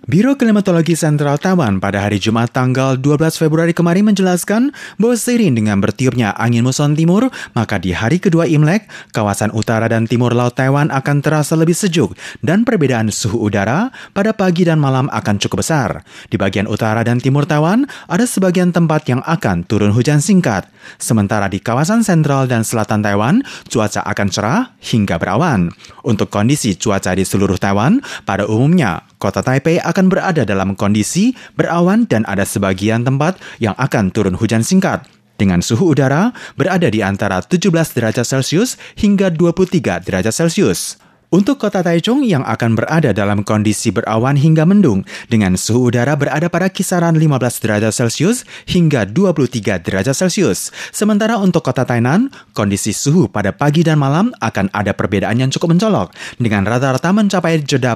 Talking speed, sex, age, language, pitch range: 155 wpm, male, 30-49, English, 105-180 Hz